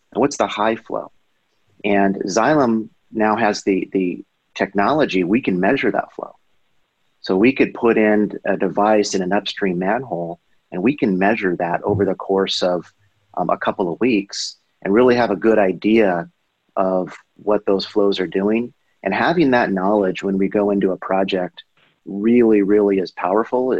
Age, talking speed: 30-49, 170 wpm